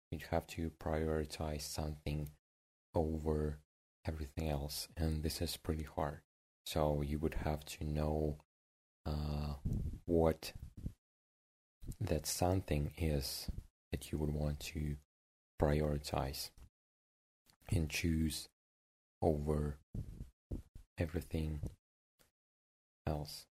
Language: English